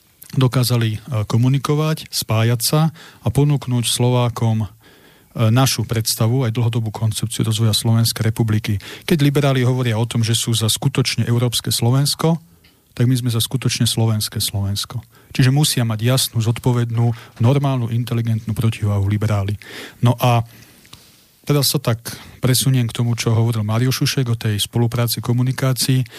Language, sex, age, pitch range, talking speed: Slovak, male, 40-59, 115-130 Hz, 135 wpm